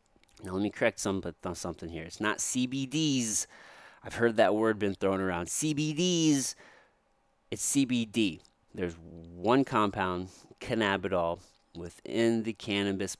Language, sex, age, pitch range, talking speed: English, male, 30-49, 95-125 Hz, 125 wpm